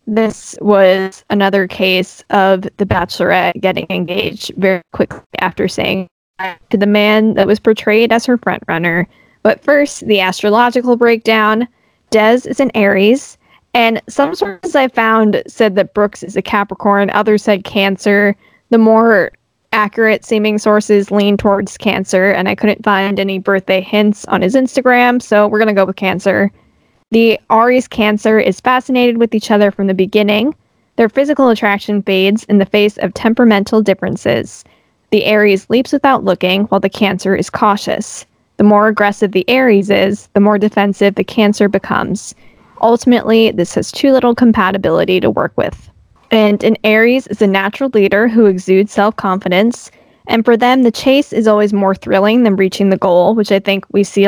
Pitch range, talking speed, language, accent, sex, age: 195-225 Hz, 165 wpm, English, American, female, 10-29